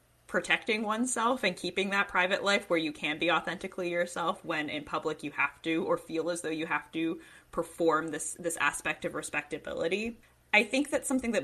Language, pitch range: English, 160-195 Hz